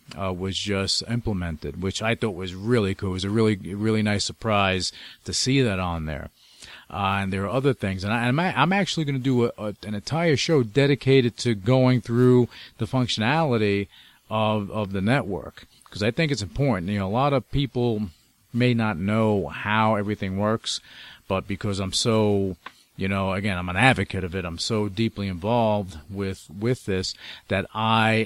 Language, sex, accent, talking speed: English, male, American, 185 wpm